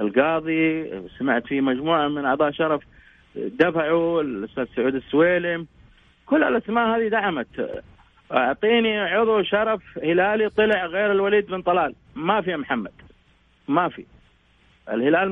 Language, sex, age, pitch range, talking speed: English, male, 30-49, 160-180 Hz, 115 wpm